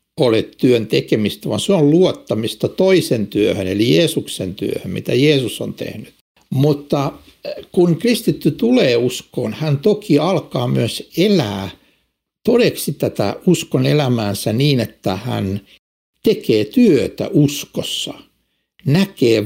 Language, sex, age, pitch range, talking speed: Finnish, male, 60-79, 110-175 Hz, 110 wpm